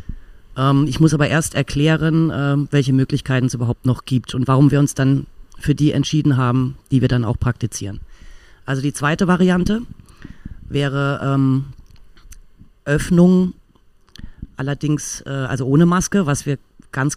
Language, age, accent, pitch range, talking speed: German, 30-49, German, 125-150 Hz, 135 wpm